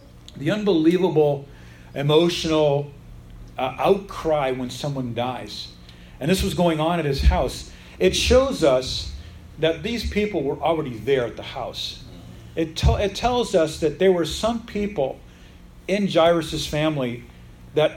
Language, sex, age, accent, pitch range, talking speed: English, male, 40-59, American, 115-170 Hz, 135 wpm